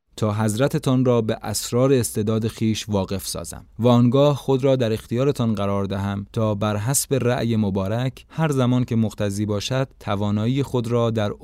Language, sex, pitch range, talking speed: Persian, male, 100-130 Hz, 170 wpm